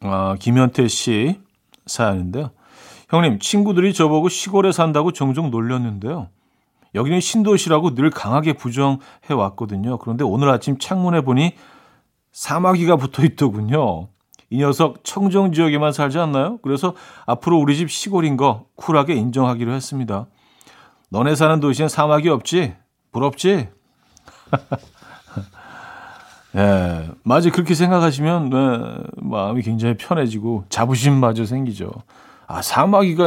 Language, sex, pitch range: Korean, male, 110-160 Hz